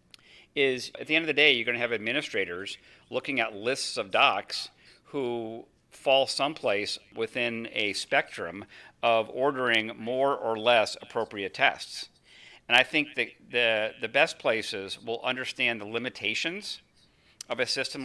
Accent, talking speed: American, 150 wpm